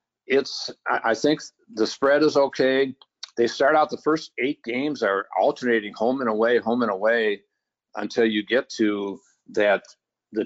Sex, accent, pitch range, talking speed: male, American, 105-135 Hz, 160 wpm